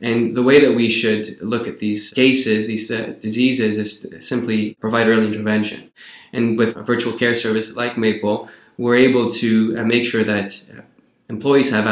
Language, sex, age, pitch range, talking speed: English, male, 20-39, 110-120 Hz, 180 wpm